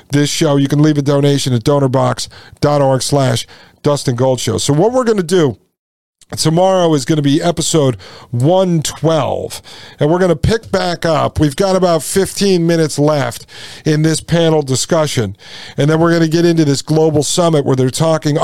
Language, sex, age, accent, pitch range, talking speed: English, male, 50-69, American, 135-175 Hz, 175 wpm